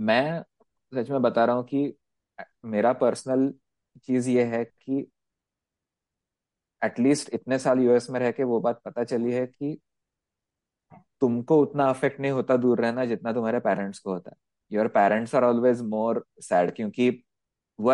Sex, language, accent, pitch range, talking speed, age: male, Hindi, native, 105-135 Hz, 155 wpm, 20-39